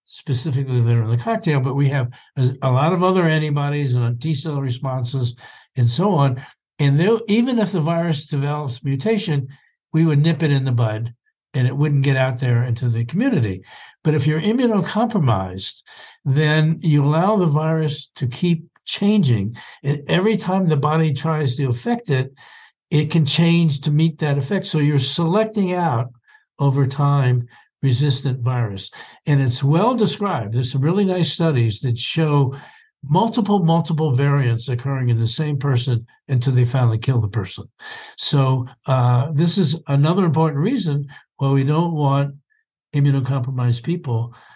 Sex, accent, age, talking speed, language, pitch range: male, American, 60-79, 160 wpm, English, 125-160 Hz